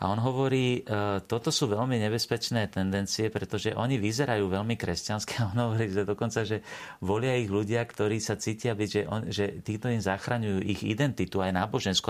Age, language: 40-59, Slovak